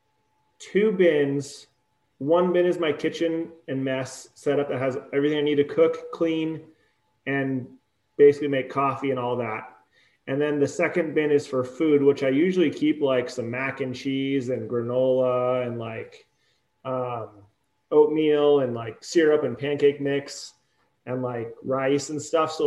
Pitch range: 125-145 Hz